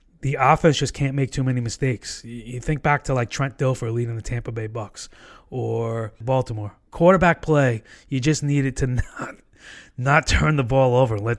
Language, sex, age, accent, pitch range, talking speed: English, male, 20-39, American, 120-140 Hz, 190 wpm